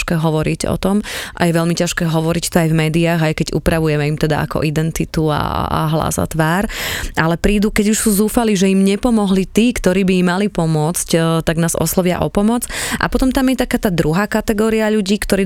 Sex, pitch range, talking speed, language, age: female, 160-195 Hz, 210 wpm, Slovak, 20-39